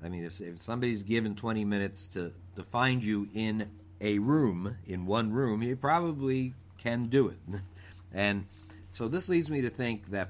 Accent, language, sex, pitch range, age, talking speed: American, English, male, 95-115 Hz, 50-69, 180 wpm